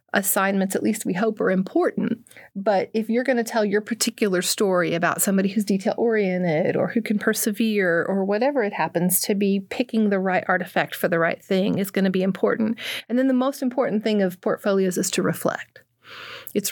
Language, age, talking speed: English, 40-59, 195 wpm